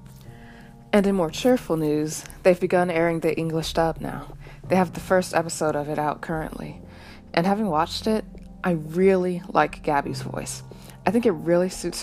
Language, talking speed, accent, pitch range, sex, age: English, 175 wpm, American, 150-185 Hz, female, 20-39